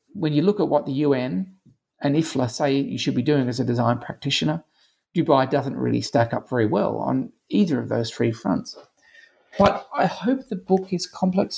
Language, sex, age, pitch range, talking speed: English, male, 40-59, 125-155 Hz, 195 wpm